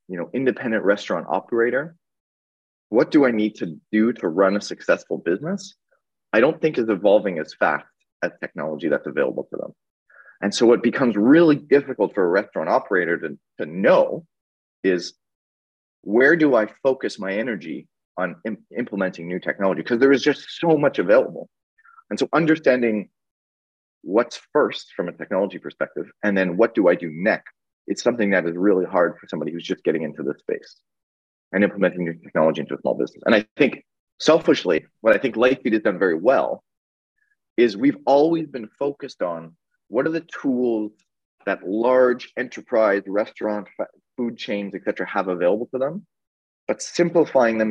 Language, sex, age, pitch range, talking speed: English, male, 30-49, 90-140 Hz, 170 wpm